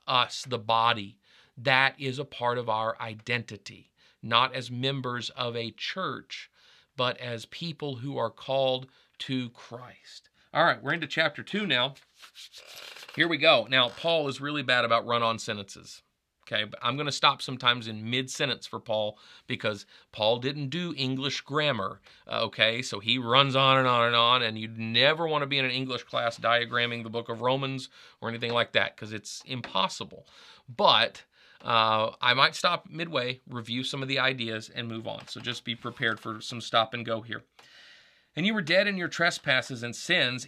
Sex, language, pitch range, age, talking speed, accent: male, English, 120-145 Hz, 40-59, 180 wpm, American